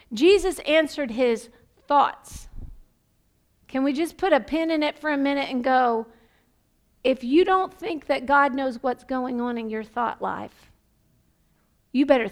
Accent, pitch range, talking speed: American, 230-305 Hz, 160 wpm